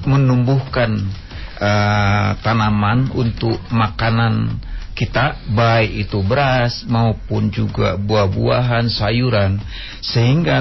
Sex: male